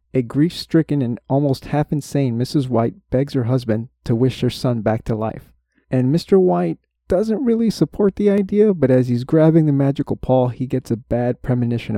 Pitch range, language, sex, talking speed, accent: 115-140 Hz, English, male, 185 wpm, American